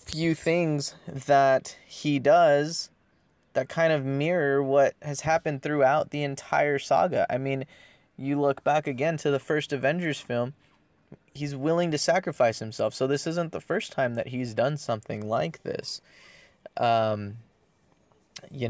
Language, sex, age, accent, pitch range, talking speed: English, male, 20-39, American, 110-140 Hz, 150 wpm